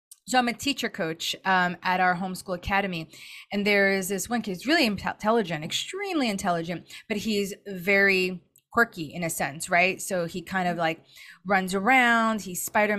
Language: English